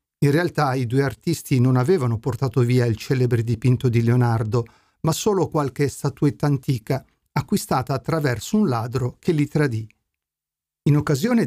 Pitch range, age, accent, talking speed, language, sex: 120-165 Hz, 50-69, native, 145 wpm, Italian, male